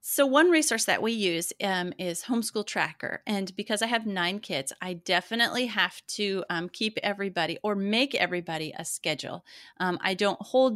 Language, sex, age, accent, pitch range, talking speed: English, female, 30-49, American, 170-215 Hz, 180 wpm